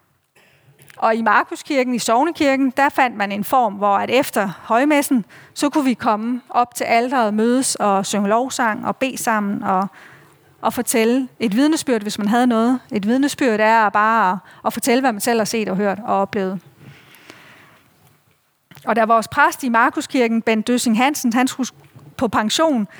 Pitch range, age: 215-270 Hz, 30-49